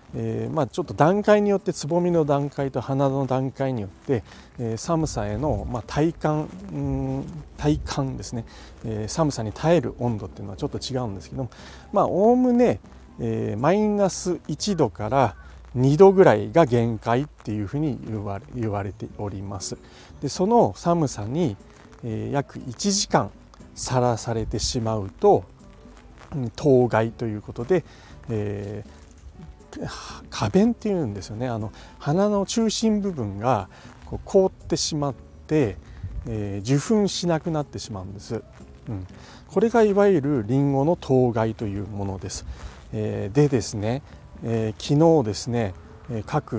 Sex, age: male, 40-59